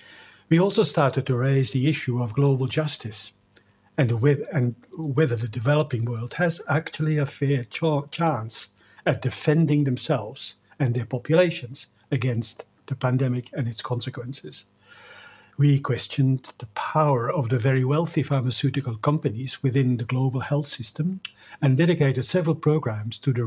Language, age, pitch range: English, 60-79, 120-145 Hz